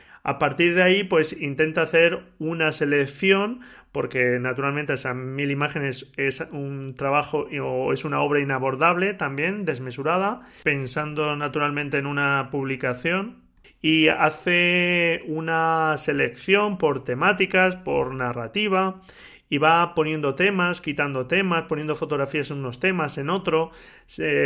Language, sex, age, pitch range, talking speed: Spanish, male, 30-49, 140-170 Hz, 125 wpm